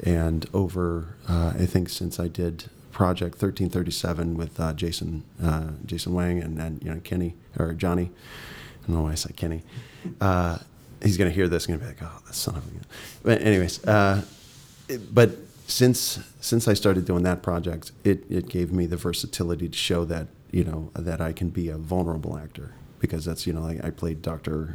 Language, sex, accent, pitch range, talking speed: English, male, American, 85-95 Hz, 205 wpm